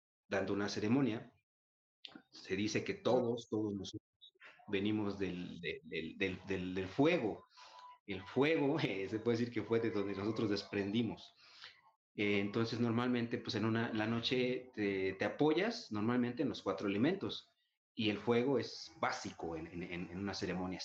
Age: 30-49